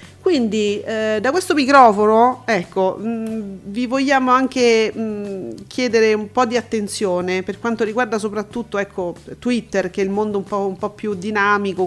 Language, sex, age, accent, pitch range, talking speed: Italian, female, 40-59, native, 205-235 Hz, 160 wpm